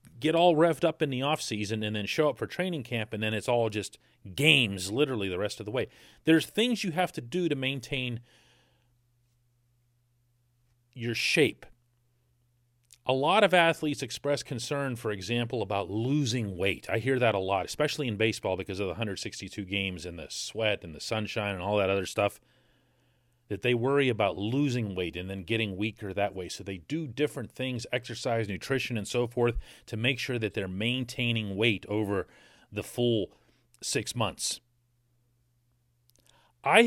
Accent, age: American, 40-59